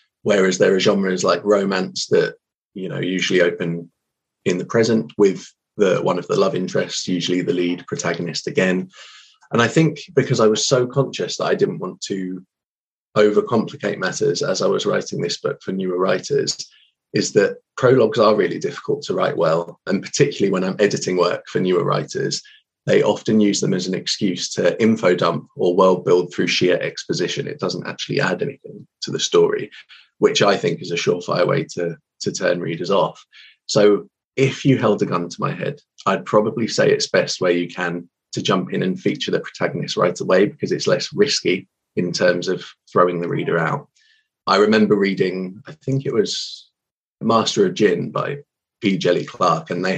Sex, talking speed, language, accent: male, 190 wpm, English, British